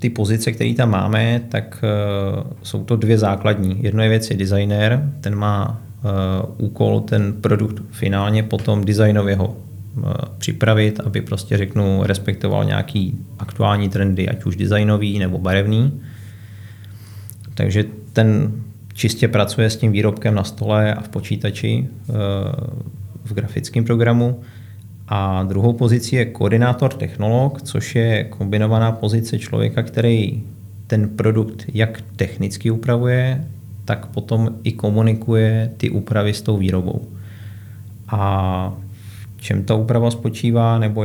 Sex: male